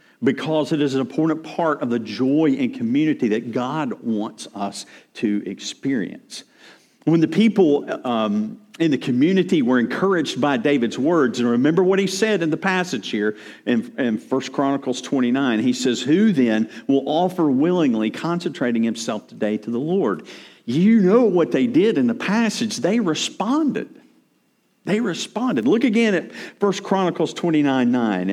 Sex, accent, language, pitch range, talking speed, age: male, American, English, 140-220 Hz, 155 wpm, 50-69